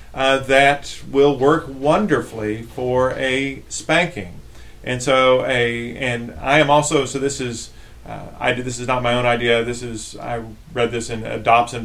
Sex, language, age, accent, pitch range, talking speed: male, English, 40-59, American, 115-135 Hz, 175 wpm